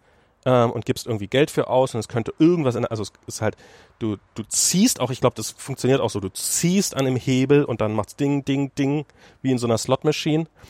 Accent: German